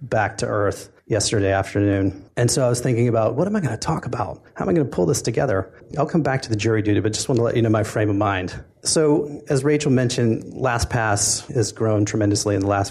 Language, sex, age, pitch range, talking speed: English, male, 30-49, 105-130 Hz, 255 wpm